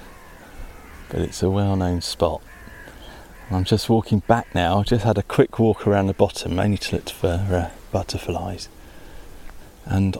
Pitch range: 85-105 Hz